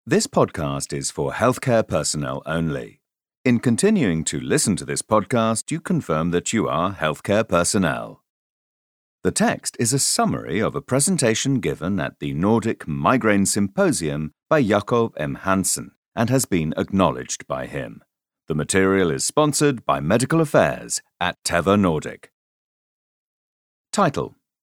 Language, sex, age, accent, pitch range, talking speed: English, male, 40-59, British, 90-145 Hz, 135 wpm